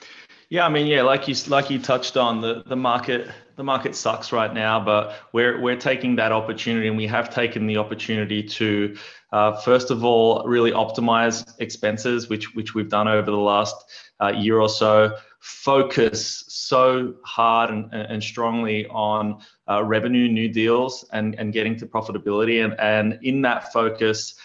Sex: male